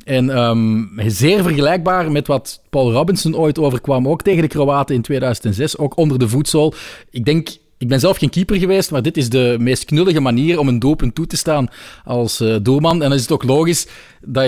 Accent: Dutch